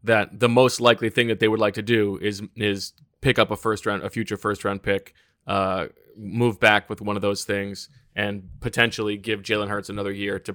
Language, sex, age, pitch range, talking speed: English, male, 20-39, 100-125 Hz, 220 wpm